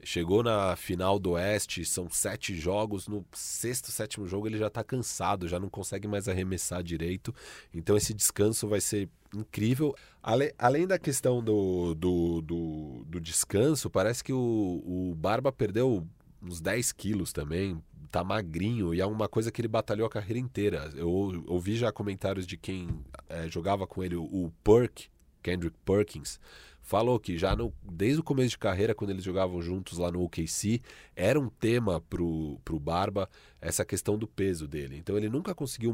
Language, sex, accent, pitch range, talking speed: Portuguese, male, Brazilian, 85-110 Hz, 170 wpm